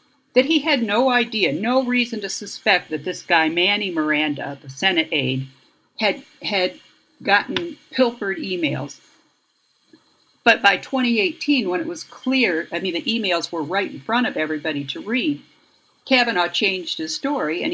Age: 50-69